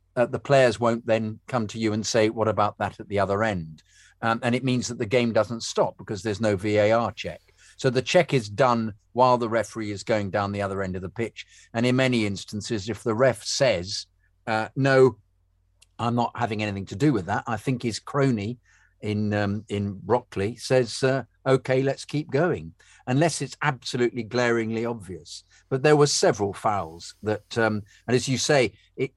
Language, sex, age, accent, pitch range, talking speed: English, male, 50-69, British, 100-125 Hz, 200 wpm